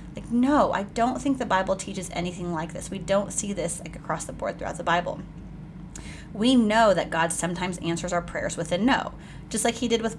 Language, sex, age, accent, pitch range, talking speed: English, female, 30-49, American, 170-200 Hz, 225 wpm